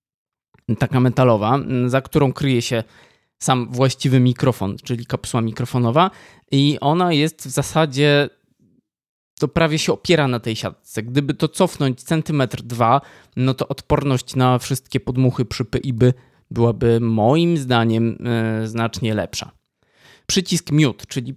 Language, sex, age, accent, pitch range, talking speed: Polish, male, 20-39, native, 125-145 Hz, 125 wpm